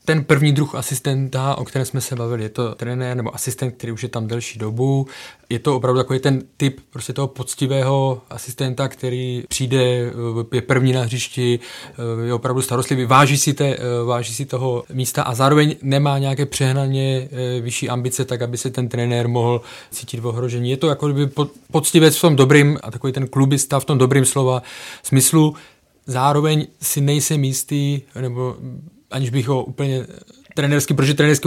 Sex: male